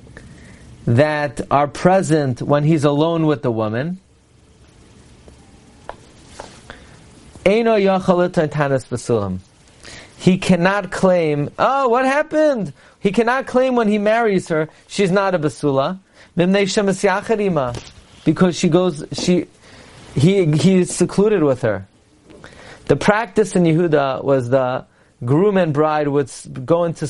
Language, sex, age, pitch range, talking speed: English, male, 40-59, 140-190 Hz, 105 wpm